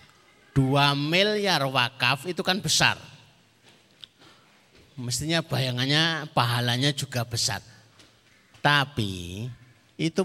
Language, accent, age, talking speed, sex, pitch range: Indonesian, native, 50-69, 75 wpm, male, 120-160 Hz